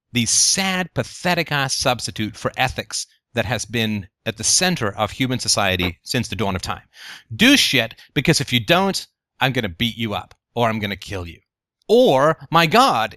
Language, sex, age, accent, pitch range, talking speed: English, male, 30-49, American, 115-160 Hz, 185 wpm